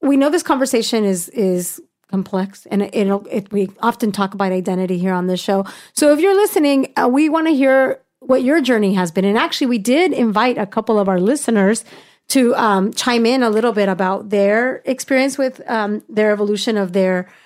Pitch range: 195-250 Hz